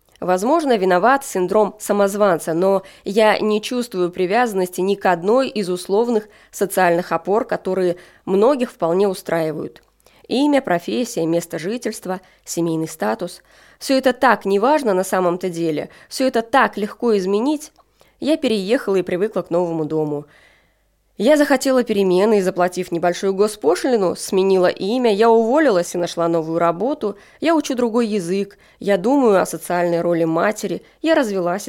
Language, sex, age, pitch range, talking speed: Russian, female, 20-39, 180-245 Hz, 135 wpm